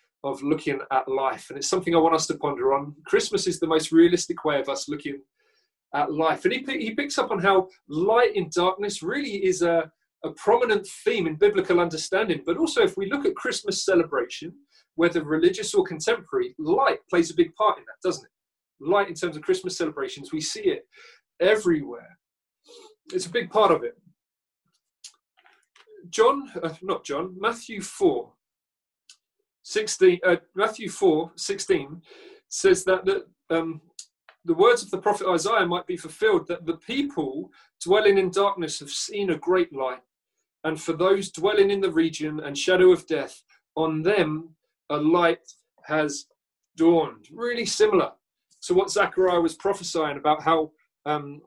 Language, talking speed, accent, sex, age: English, 165 wpm, British, male, 30-49